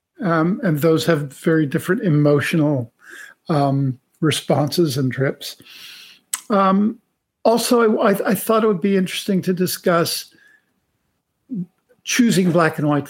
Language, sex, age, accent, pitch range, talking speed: English, male, 50-69, American, 145-200 Hz, 120 wpm